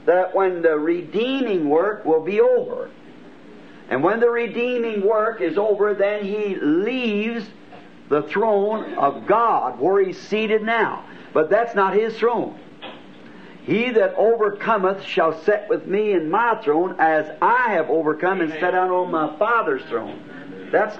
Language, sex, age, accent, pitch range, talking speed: English, male, 60-79, American, 175-245 Hz, 150 wpm